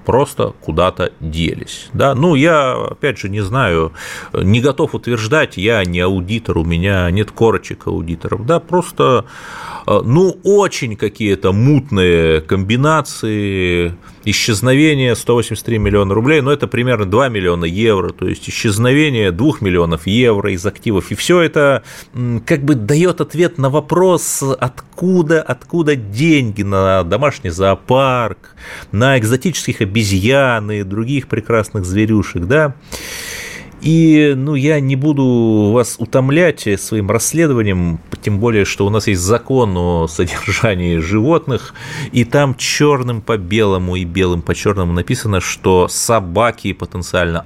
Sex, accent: male, native